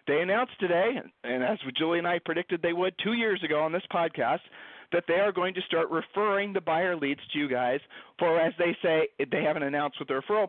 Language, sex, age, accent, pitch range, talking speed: English, male, 40-59, American, 150-195 Hz, 230 wpm